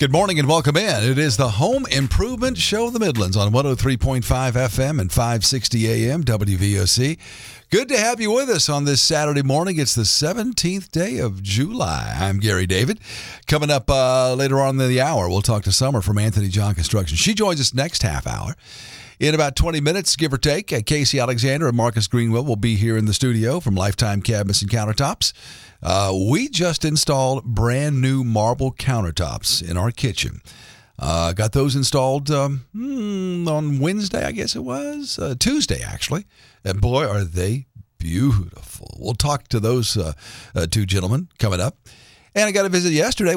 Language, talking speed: English, 180 wpm